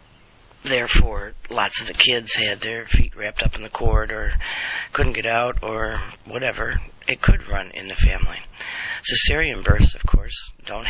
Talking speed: 165 wpm